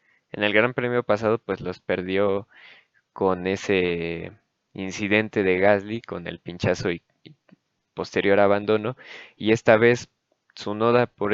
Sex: male